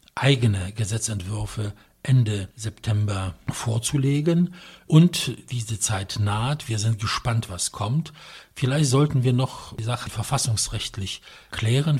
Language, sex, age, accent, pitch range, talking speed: English, male, 60-79, German, 105-130 Hz, 110 wpm